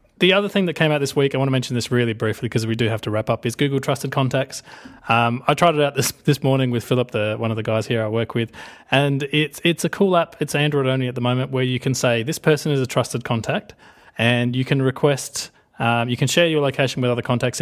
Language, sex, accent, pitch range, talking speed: English, male, Australian, 120-145 Hz, 275 wpm